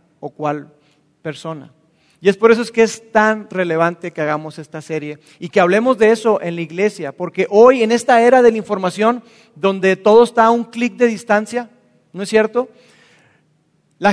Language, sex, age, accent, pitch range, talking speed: Spanish, male, 40-59, Mexican, 180-230 Hz, 185 wpm